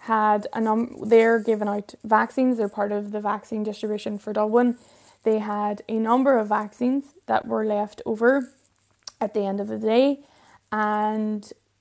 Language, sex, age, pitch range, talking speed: English, female, 10-29, 210-240 Hz, 165 wpm